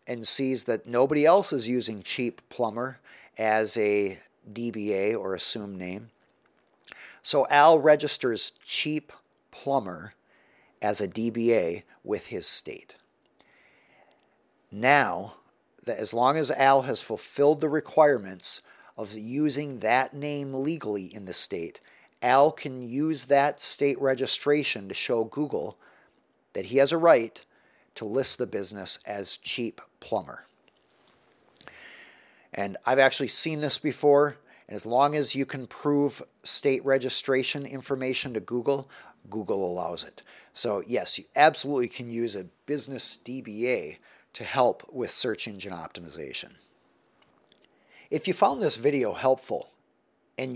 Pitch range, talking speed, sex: 115-145 Hz, 125 wpm, male